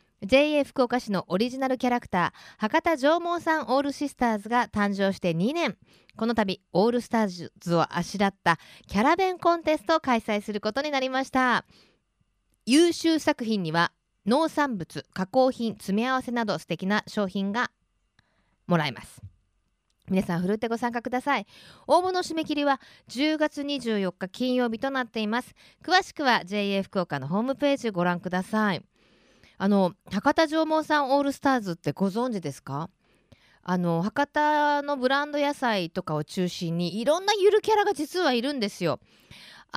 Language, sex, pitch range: Japanese, female, 190-285 Hz